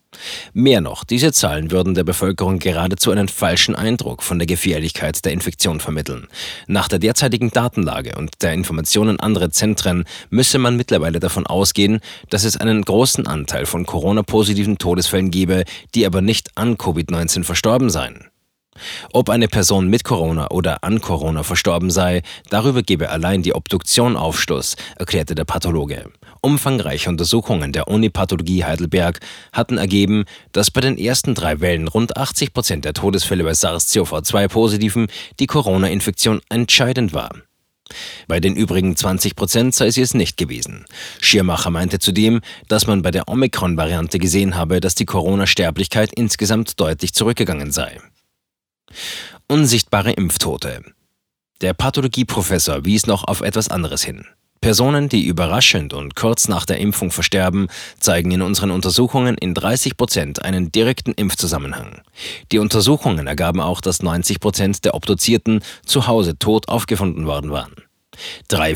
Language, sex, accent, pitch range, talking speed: German, male, German, 85-110 Hz, 140 wpm